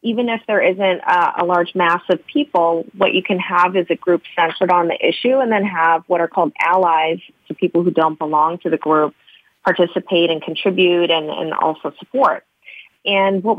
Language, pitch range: English, 165-195 Hz